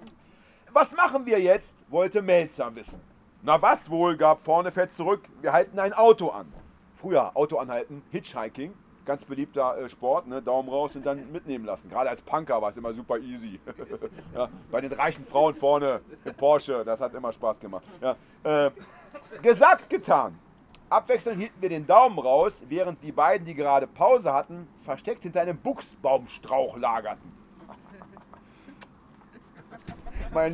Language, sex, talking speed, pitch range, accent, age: German, male, 150 wpm, 145-215 Hz, German, 40-59